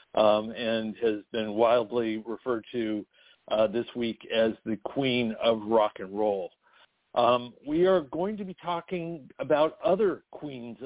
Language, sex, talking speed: English, male, 150 wpm